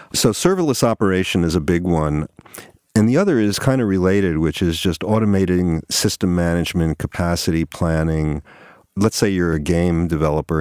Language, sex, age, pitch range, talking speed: English, male, 50-69, 75-90 Hz, 160 wpm